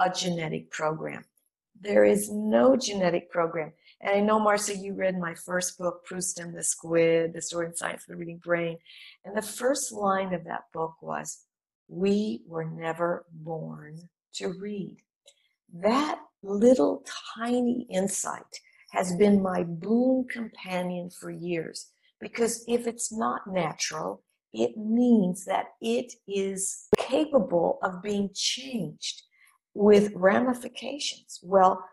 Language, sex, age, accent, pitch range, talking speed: English, female, 50-69, American, 175-225 Hz, 135 wpm